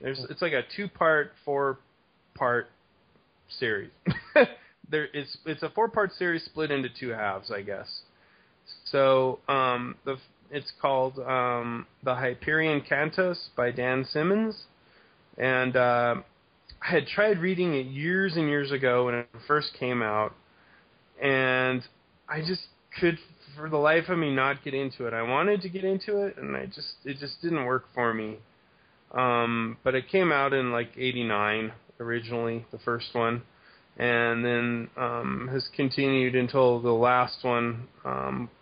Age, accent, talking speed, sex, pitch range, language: 20-39, American, 145 wpm, male, 120-155 Hz, English